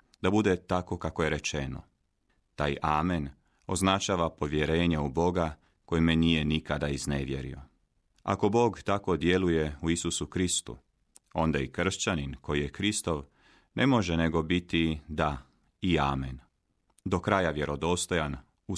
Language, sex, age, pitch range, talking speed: Croatian, male, 30-49, 75-90 Hz, 130 wpm